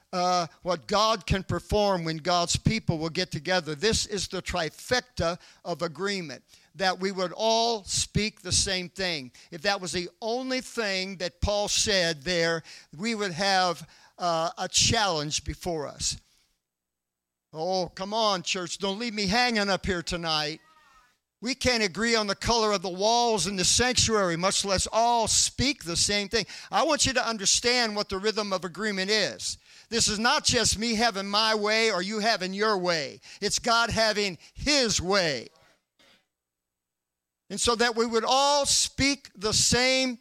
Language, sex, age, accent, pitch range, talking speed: English, male, 50-69, American, 180-230 Hz, 165 wpm